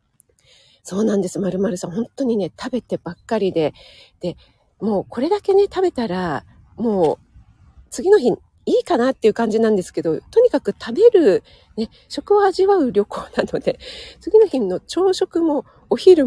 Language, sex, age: Japanese, female, 40-59